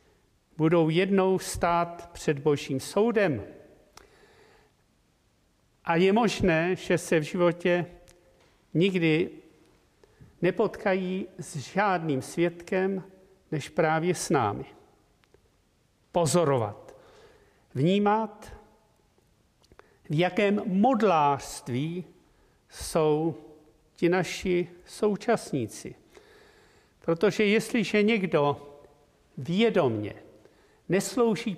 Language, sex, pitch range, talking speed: Czech, male, 155-205 Hz, 70 wpm